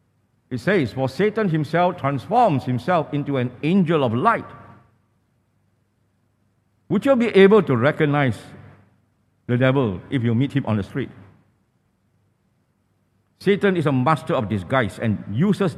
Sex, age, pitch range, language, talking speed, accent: male, 50-69, 110-160 Hz, English, 135 wpm, Malaysian